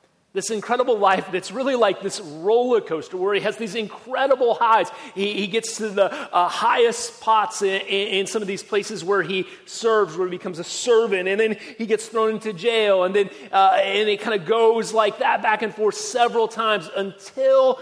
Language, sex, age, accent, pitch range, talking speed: English, male, 30-49, American, 185-235 Hz, 200 wpm